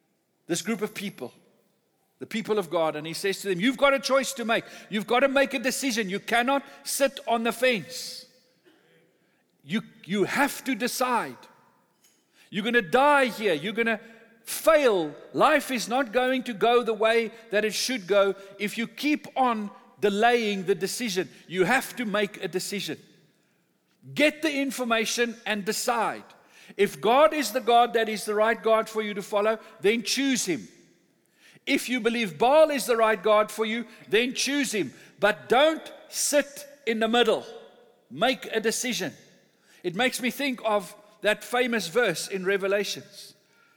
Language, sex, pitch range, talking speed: English, male, 205-255 Hz, 170 wpm